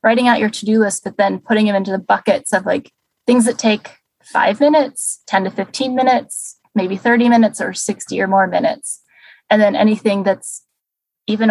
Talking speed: 190 wpm